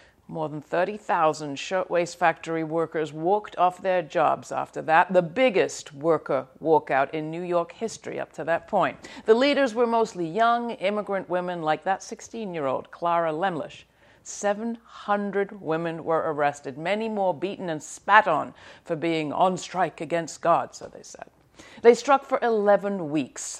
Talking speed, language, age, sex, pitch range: 155 wpm, English, 60-79, female, 160-210 Hz